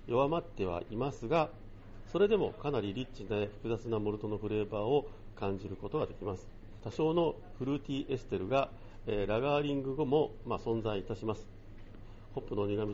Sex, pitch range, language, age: male, 100-130 Hz, Japanese, 50-69